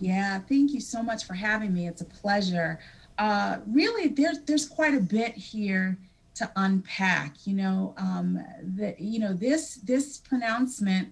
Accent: American